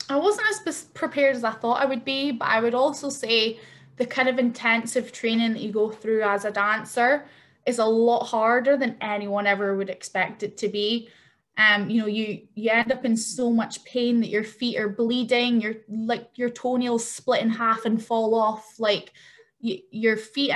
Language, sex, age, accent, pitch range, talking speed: English, female, 10-29, British, 215-245 Hz, 200 wpm